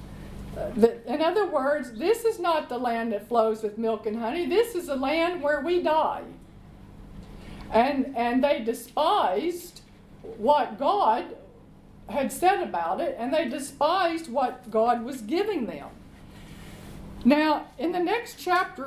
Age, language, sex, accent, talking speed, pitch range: 50-69, English, female, American, 140 wpm, 230-340 Hz